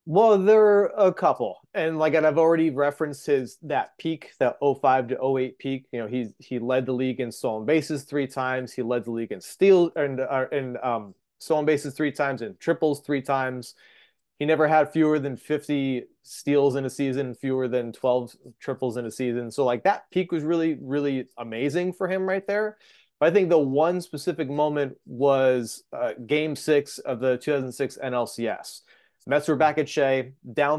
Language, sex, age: English, male, 30-49